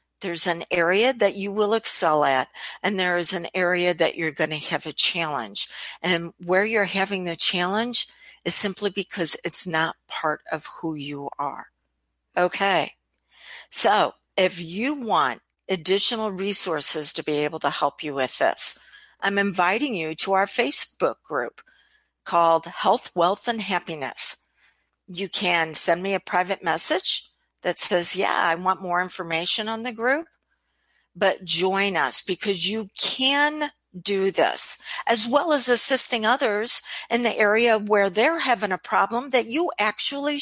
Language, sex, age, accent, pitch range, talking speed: English, female, 50-69, American, 170-225 Hz, 155 wpm